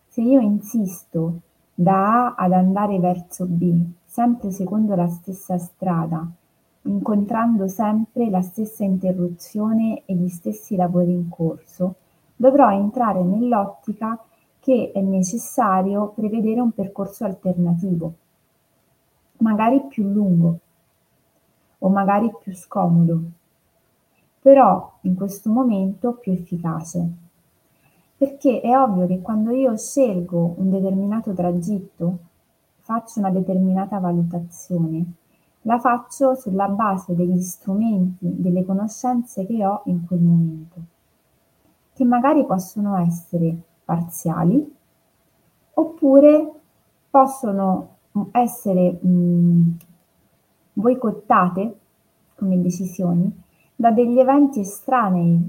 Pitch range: 175-225 Hz